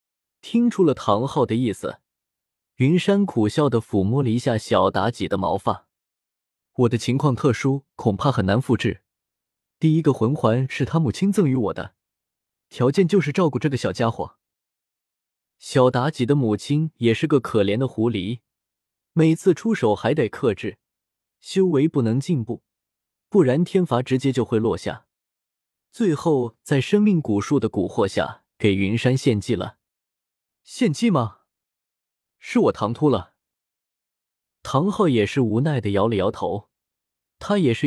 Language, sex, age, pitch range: Chinese, male, 20-39, 110-155 Hz